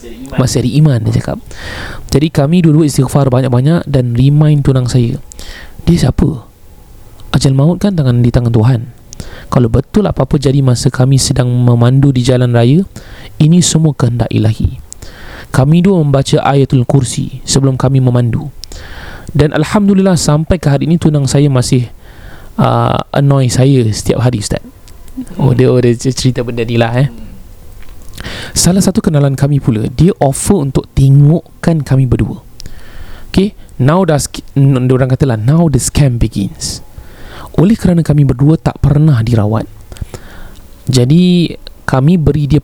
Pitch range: 120-150 Hz